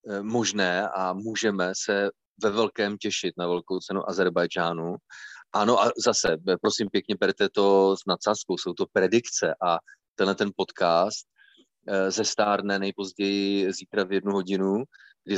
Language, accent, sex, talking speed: Czech, native, male, 135 wpm